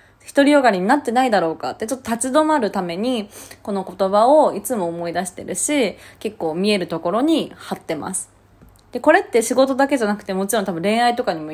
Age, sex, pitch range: 20-39, female, 170-255 Hz